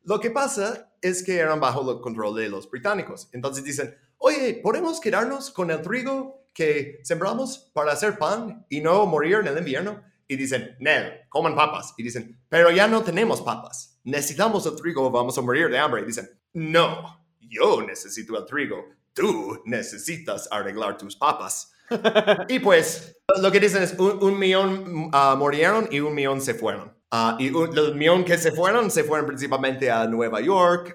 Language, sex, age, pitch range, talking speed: Spanish, male, 30-49, 130-195 Hz, 180 wpm